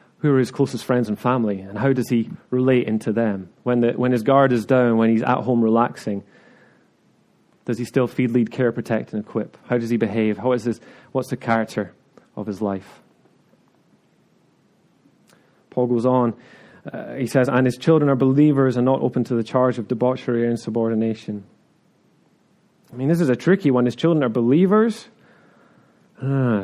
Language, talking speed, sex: English, 185 wpm, male